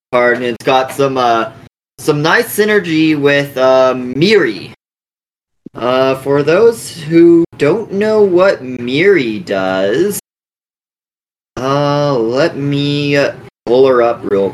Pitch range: 130-180 Hz